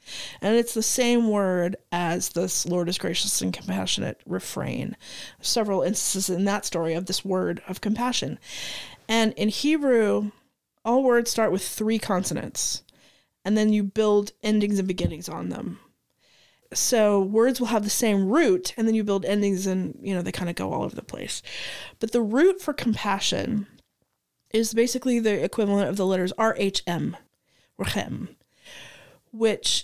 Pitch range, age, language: 190-230 Hz, 30-49, English